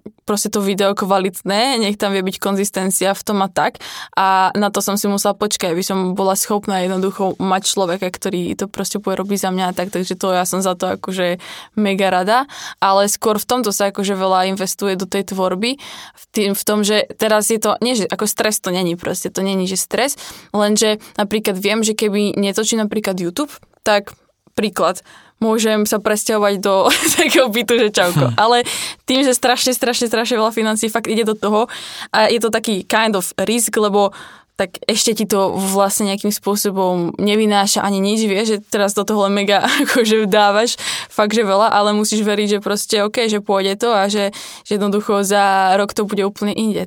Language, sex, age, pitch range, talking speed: Czech, female, 10-29, 195-220 Hz, 195 wpm